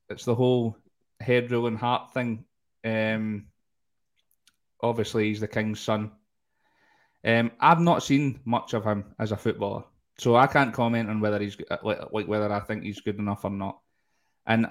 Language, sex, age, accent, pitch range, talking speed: English, male, 20-39, British, 105-115 Hz, 165 wpm